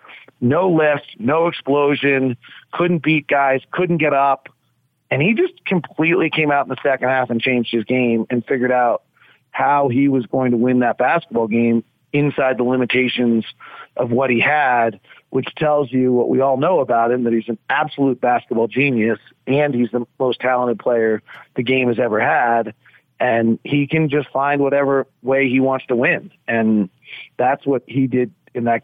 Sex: male